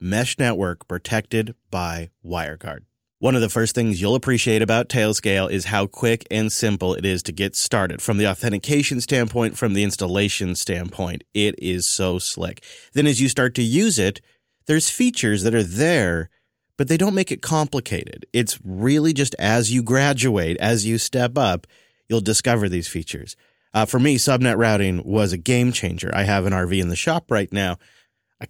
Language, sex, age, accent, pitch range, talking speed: English, male, 30-49, American, 95-125 Hz, 185 wpm